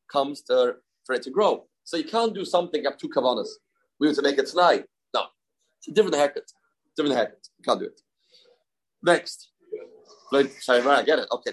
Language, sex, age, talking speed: English, male, 30-49, 180 wpm